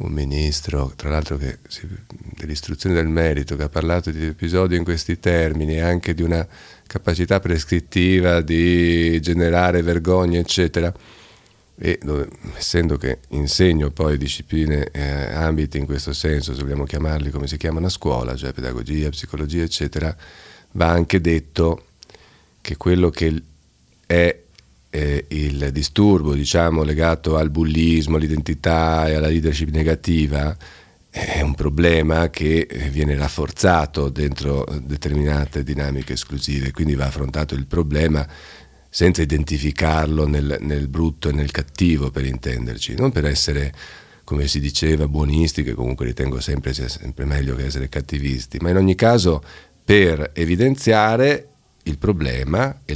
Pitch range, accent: 70-85 Hz, native